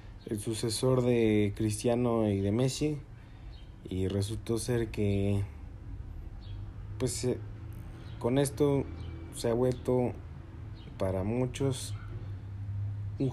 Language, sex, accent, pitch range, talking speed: Spanish, male, Mexican, 100-115 Hz, 90 wpm